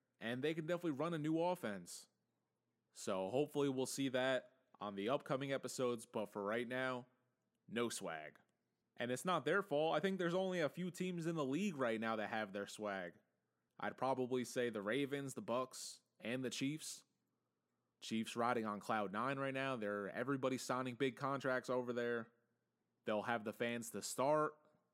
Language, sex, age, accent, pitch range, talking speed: English, male, 20-39, American, 120-165 Hz, 180 wpm